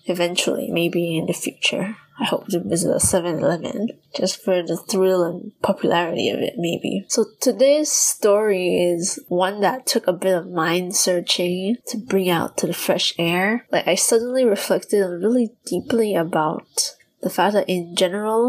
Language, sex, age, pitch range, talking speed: English, female, 20-39, 180-220 Hz, 160 wpm